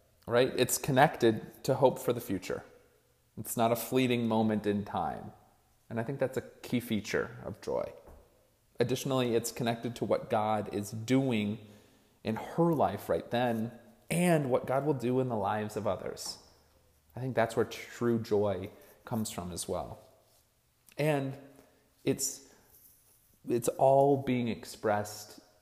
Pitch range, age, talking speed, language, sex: 105-130 Hz, 30-49, 150 wpm, English, male